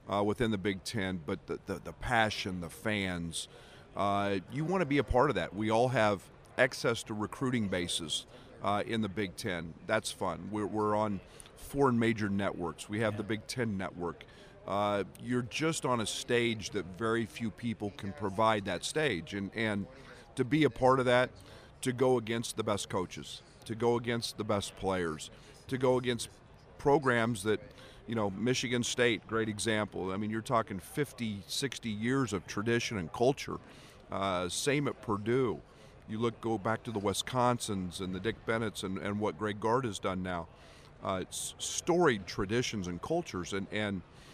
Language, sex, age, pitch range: English, male, 50-69, 100-120 Hz